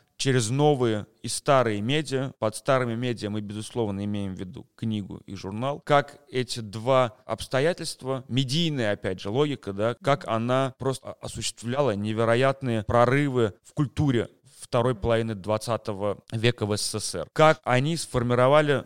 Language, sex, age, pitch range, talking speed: Russian, male, 30-49, 110-135 Hz, 135 wpm